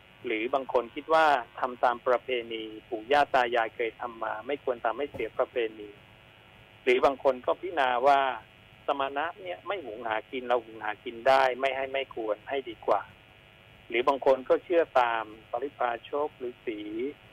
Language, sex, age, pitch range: Thai, male, 60-79, 110-140 Hz